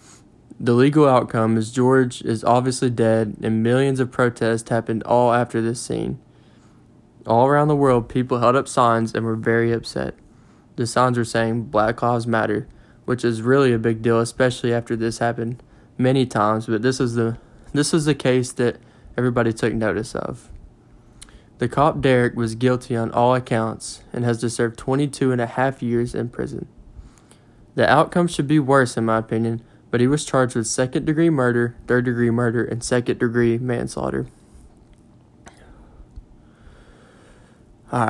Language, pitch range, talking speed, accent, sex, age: English, 115-130 Hz, 160 wpm, American, male, 20-39